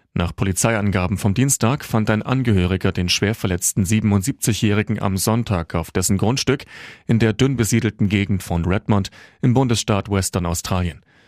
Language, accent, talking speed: German, German, 145 wpm